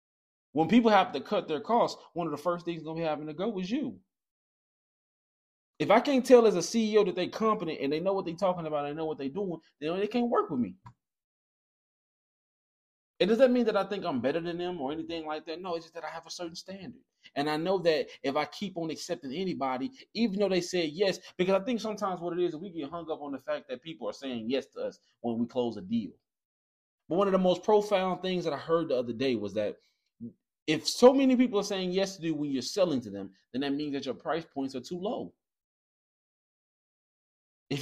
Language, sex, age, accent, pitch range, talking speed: English, male, 20-39, American, 140-210 Hz, 245 wpm